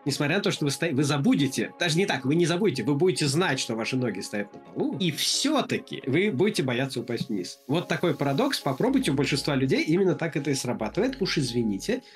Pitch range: 130-170 Hz